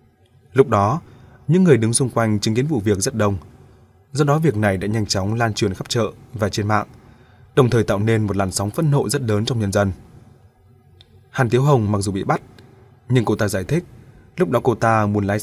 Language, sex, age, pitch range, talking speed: Vietnamese, male, 20-39, 105-125 Hz, 230 wpm